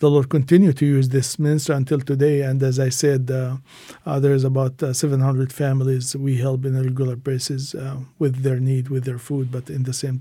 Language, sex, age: English, male, 50-69